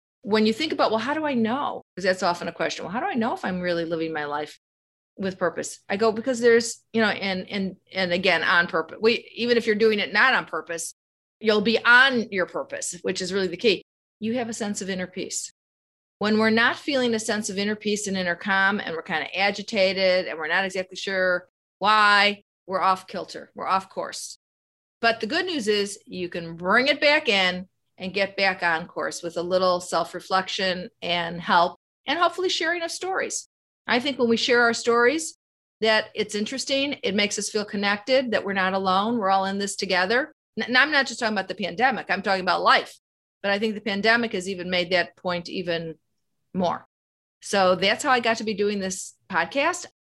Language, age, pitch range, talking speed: English, 40-59, 180-230 Hz, 215 wpm